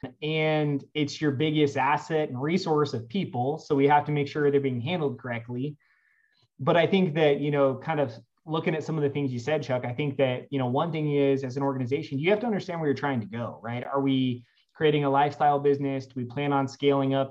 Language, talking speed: English, 240 wpm